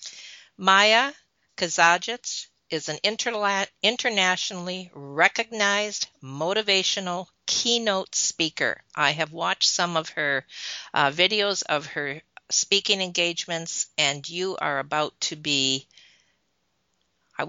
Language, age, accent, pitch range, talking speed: English, 50-69, American, 155-200 Hz, 100 wpm